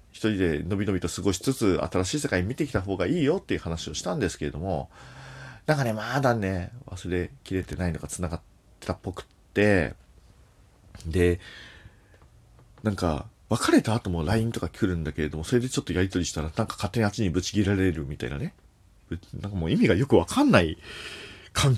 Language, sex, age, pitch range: Japanese, male, 40-59, 90-120 Hz